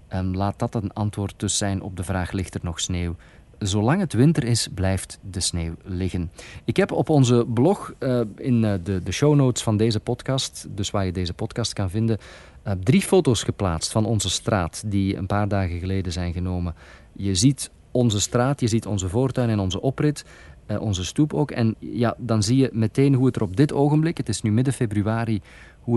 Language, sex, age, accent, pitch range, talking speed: Dutch, male, 40-59, Dutch, 90-115 Hz, 195 wpm